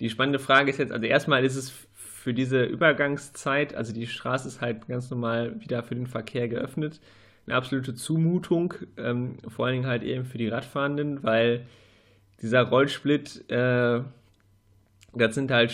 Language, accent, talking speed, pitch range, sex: German, German, 165 wpm, 115-140 Hz, male